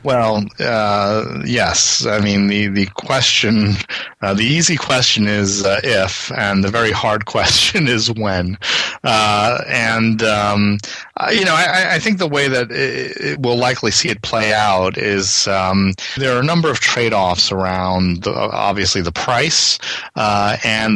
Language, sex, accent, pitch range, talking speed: English, male, American, 95-115 Hz, 165 wpm